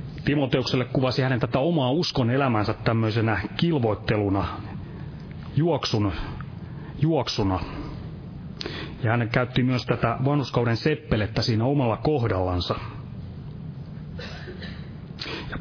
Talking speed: 85 wpm